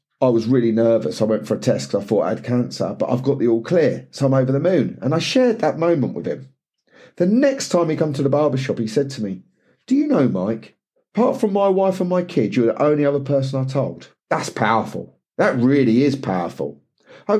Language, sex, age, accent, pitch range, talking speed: English, male, 40-59, British, 115-170 Hz, 240 wpm